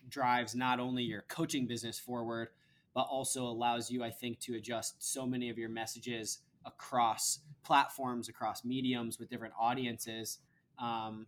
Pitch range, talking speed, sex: 115-130 Hz, 150 wpm, male